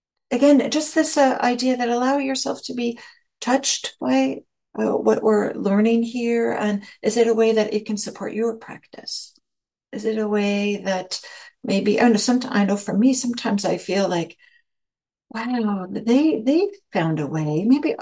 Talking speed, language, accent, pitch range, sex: 175 wpm, English, American, 180-250 Hz, female